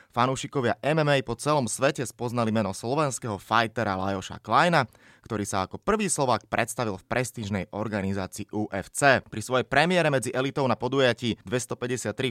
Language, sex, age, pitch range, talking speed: Slovak, male, 20-39, 105-130 Hz, 140 wpm